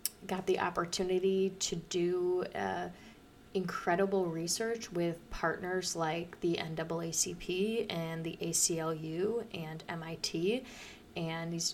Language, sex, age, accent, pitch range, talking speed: English, female, 20-39, American, 170-205 Hz, 100 wpm